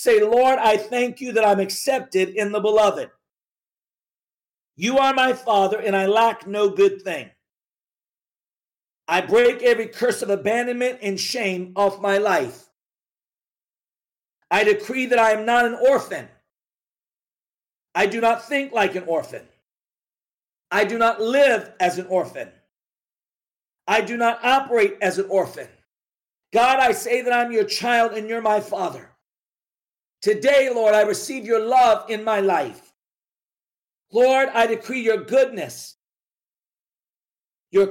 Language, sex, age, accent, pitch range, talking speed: English, male, 50-69, American, 210-260 Hz, 140 wpm